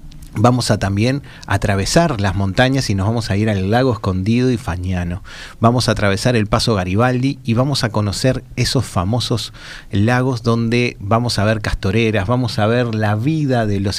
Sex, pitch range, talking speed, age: male, 100-120 Hz, 175 wpm, 30-49